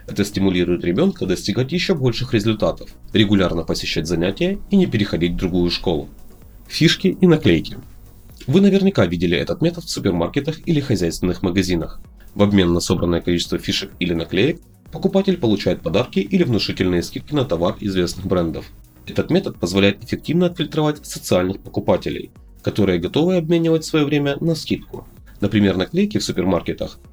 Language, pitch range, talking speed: Russian, 90-145 Hz, 145 wpm